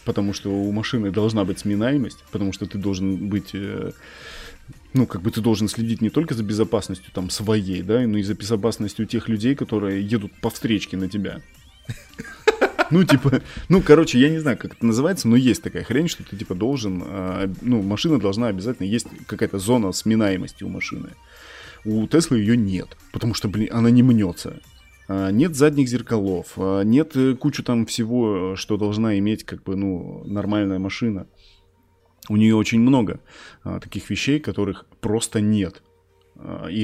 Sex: male